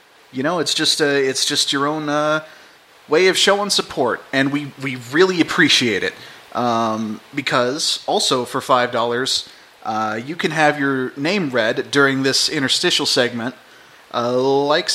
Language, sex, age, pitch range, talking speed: English, male, 30-49, 130-160 Hz, 155 wpm